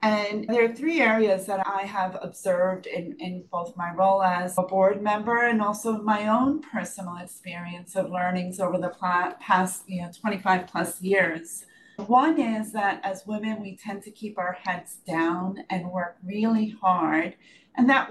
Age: 40-59